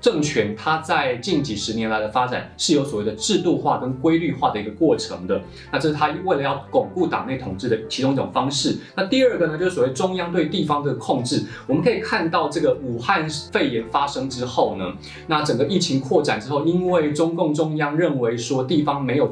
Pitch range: 120-170 Hz